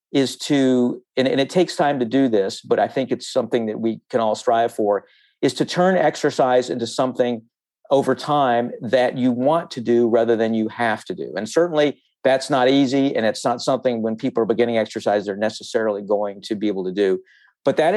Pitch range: 115-135 Hz